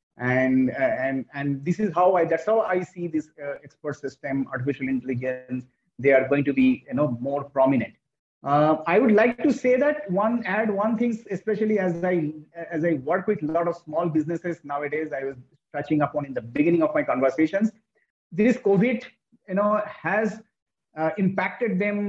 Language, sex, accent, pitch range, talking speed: English, male, Indian, 145-190 Hz, 185 wpm